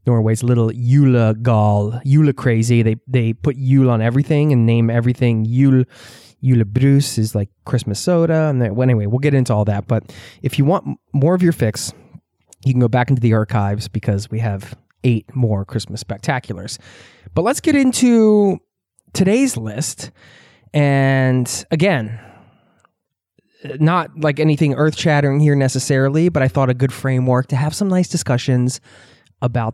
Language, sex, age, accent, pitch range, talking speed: English, male, 20-39, American, 115-145 Hz, 160 wpm